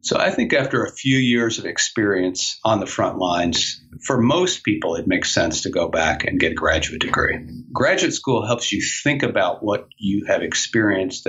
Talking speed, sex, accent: 195 wpm, male, American